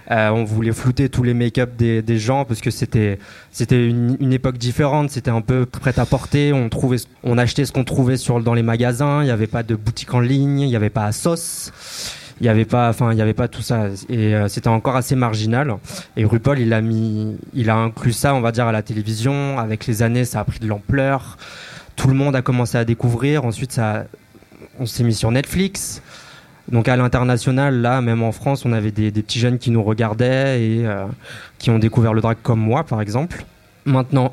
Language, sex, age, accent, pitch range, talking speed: French, male, 20-39, French, 110-130 Hz, 215 wpm